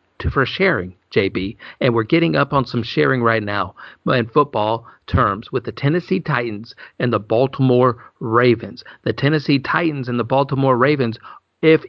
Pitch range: 115-140 Hz